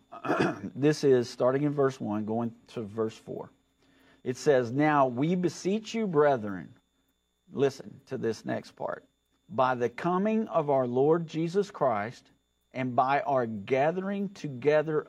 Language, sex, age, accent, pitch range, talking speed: English, male, 50-69, American, 125-170 Hz, 140 wpm